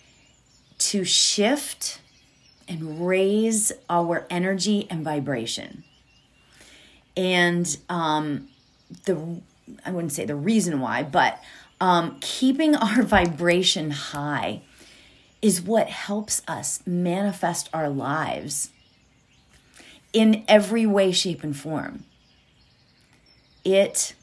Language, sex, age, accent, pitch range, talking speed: English, female, 30-49, American, 165-210 Hz, 90 wpm